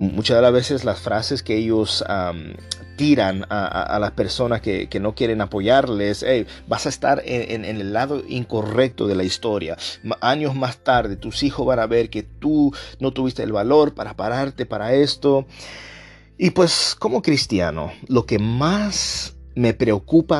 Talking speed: 170 wpm